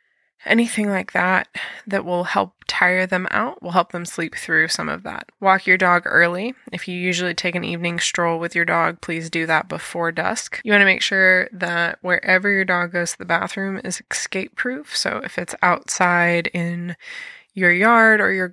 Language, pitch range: English, 170-200 Hz